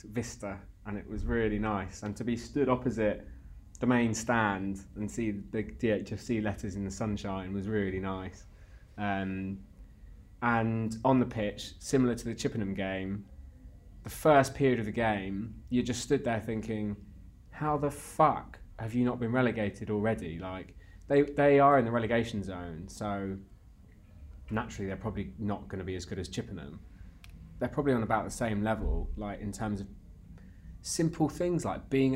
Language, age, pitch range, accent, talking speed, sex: English, 20-39, 95-130 Hz, British, 170 wpm, male